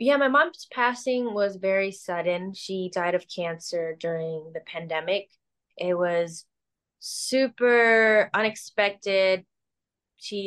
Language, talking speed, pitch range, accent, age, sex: English, 110 wpm, 165-200 Hz, American, 20-39, female